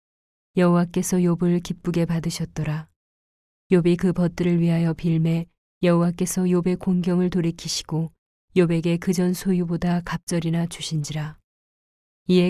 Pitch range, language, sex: 165-180 Hz, Korean, female